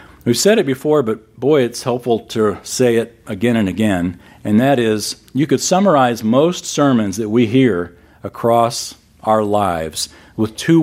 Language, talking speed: English, 165 wpm